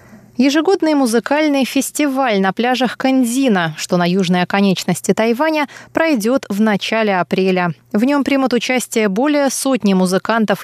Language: Russian